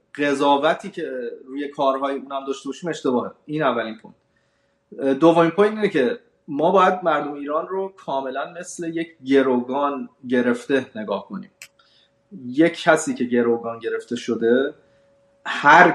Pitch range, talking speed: 125-170 Hz, 130 wpm